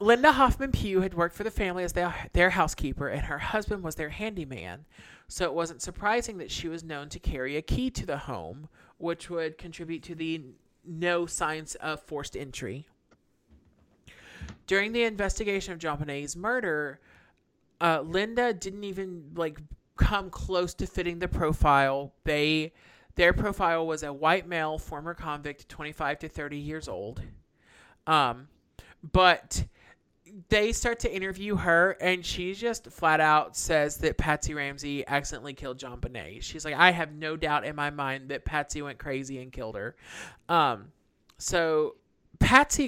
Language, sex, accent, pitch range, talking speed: English, male, American, 145-180 Hz, 155 wpm